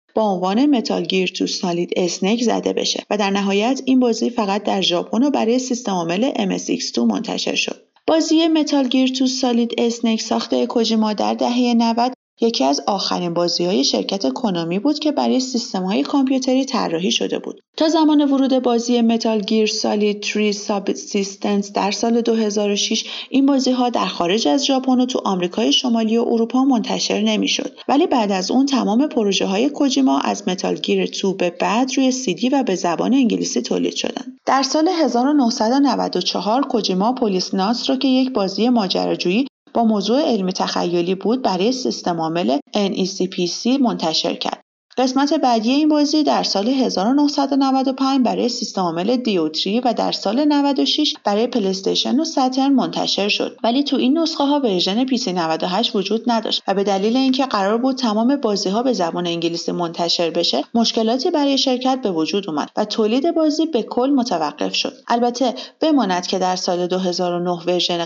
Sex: female